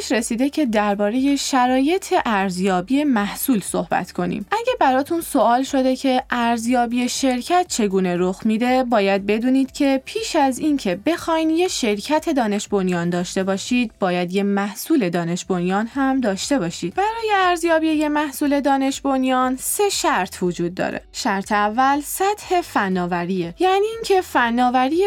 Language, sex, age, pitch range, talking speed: Persian, female, 20-39, 200-300 Hz, 135 wpm